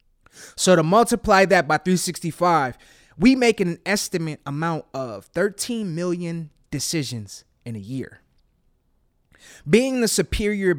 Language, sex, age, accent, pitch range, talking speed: English, male, 20-39, American, 140-195 Hz, 115 wpm